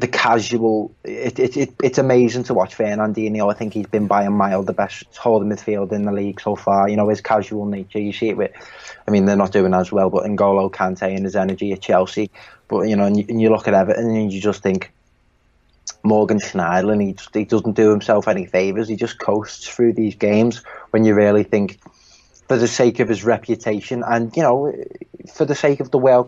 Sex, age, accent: male, 20-39, British